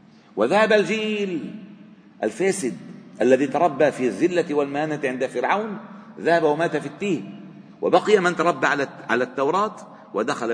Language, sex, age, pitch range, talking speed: Arabic, male, 50-69, 125-180 Hz, 115 wpm